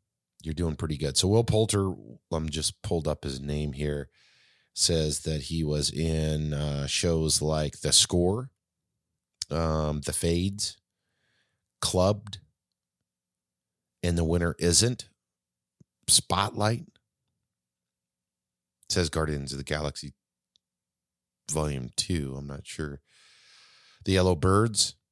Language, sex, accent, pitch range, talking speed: English, male, American, 75-100 Hz, 115 wpm